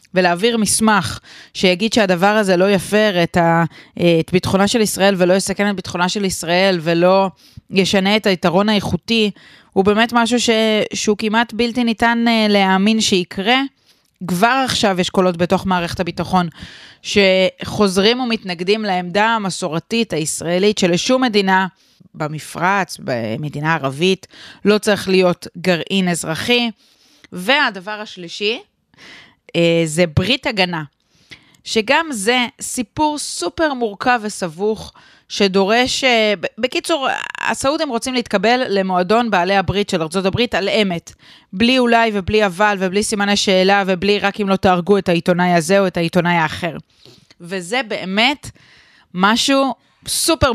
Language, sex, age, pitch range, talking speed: Hebrew, female, 30-49, 185-230 Hz, 120 wpm